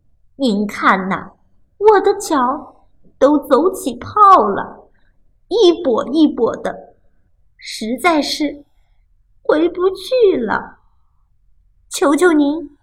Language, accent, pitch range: Chinese, native, 190-315 Hz